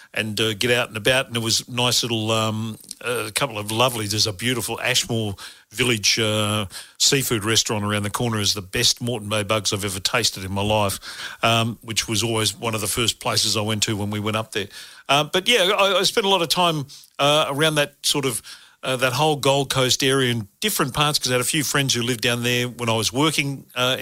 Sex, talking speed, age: male, 240 wpm, 50-69